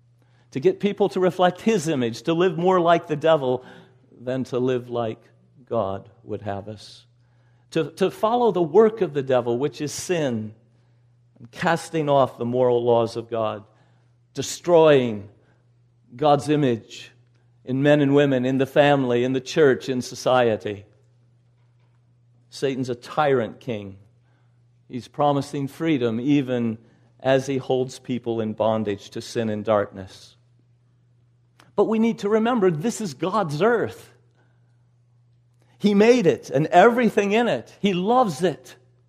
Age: 50-69